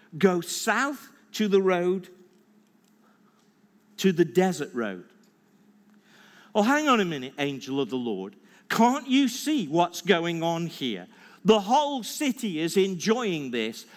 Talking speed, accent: 135 wpm, British